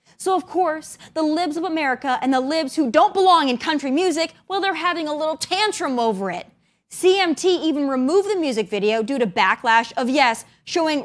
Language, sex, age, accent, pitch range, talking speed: English, female, 20-39, American, 240-340 Hz, 195 wpm